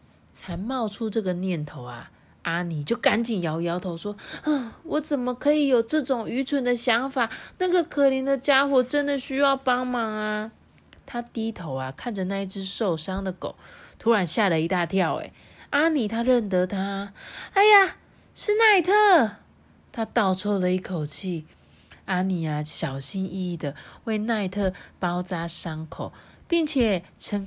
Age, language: 20-39, Chinese